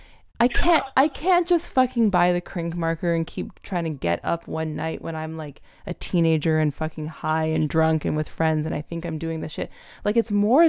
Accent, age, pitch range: American, 20-39, 160-210 Hz